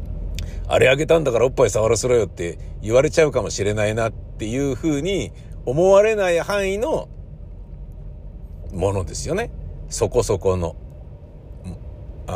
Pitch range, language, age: 95-145 Hz, Japanese, 50-69